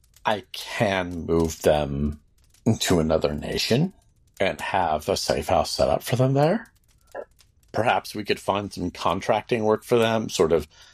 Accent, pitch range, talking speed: American, 80-95 Hz, 155 wpm